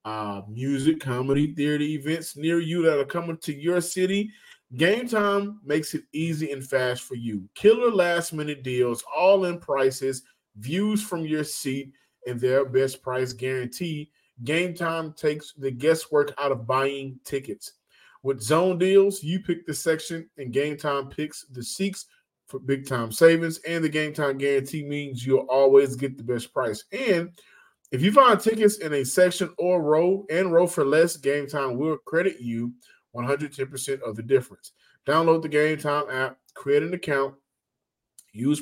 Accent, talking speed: American, 165 wpm